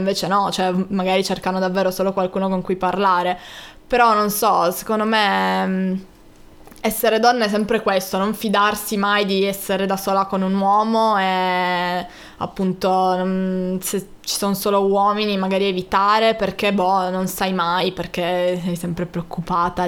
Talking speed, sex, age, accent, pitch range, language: 150 wpm, female, 20-39, native, 185-210 Hz, Italian